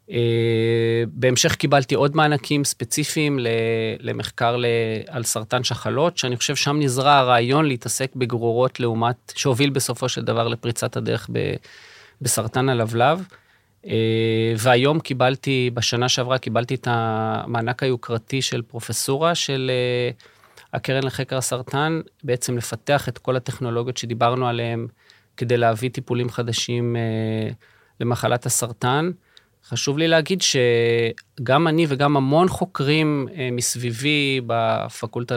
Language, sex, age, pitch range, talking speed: Hebrew, male, 30-49, 115-140 Hz, 115 wpm